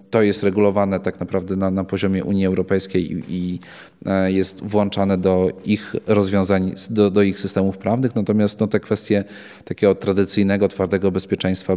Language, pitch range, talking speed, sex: Polish, 95-100 Hz, 150 wpm, male